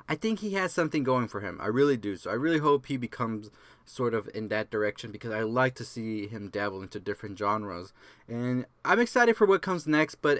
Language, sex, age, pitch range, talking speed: English, male, 20-39, 110-155 Hz, 230 wpm